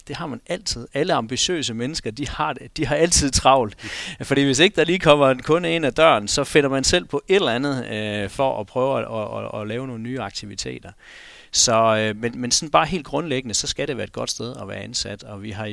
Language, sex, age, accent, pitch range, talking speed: Danish, male, 40-59, native, 100-135 Hz, 250 wpm